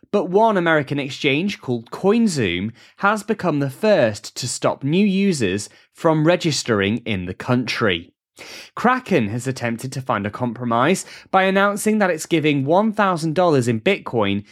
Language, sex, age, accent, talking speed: English, male, 20-39, British, 140 wpm